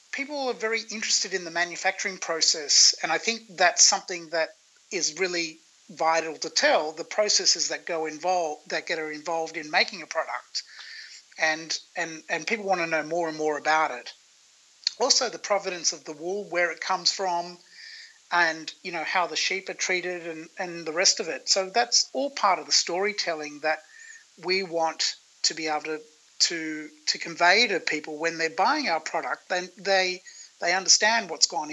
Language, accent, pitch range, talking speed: English, Australian, 160-200 Hz, 185 wpm